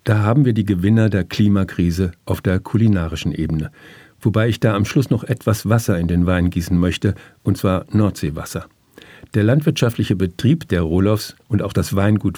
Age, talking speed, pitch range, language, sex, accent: 60-79, 175 wpm, 95-115 Hz, German, male, German